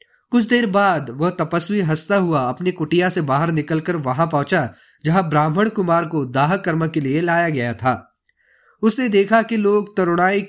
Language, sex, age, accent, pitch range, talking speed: Hindi, male, 20-39, native, 150-195 Hz, 170 wpm